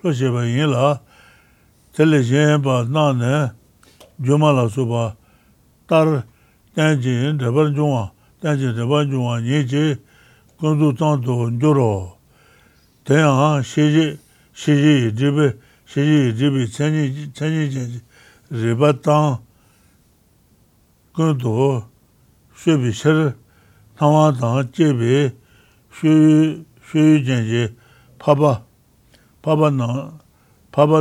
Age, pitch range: 60-79, 120-150 Hz